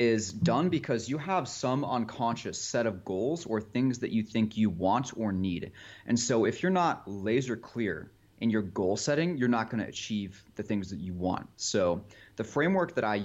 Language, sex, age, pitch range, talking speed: English, male, 30-49, 100-115 Hz, 200 wpm